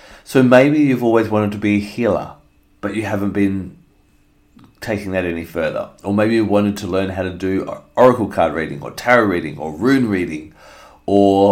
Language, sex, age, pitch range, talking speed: English, male, 30-49, 90-105 Hz, 190 wpm